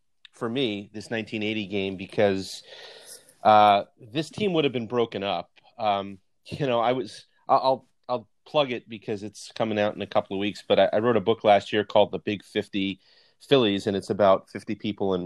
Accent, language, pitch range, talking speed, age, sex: American, English, 100-120 Hz, 195 wpm, 30-49, male